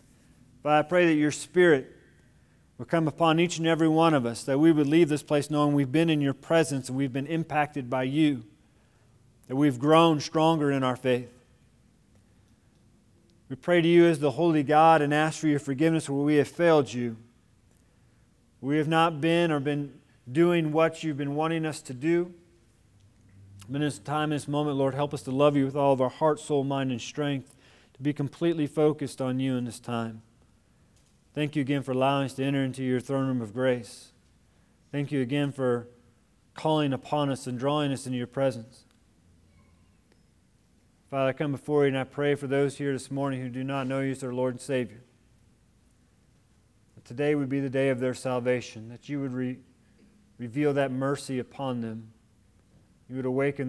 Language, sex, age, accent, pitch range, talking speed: English, male, 40-59, American, 120-150 Hz, 190 wpm